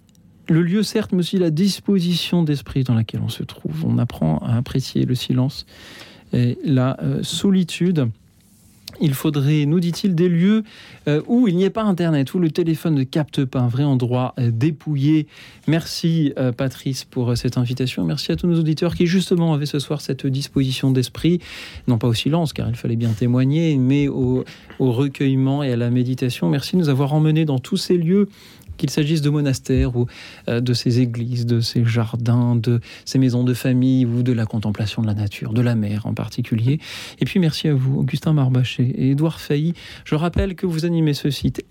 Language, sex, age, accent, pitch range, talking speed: French, male, 40-59, French, 125-160 Hz, 190 wpm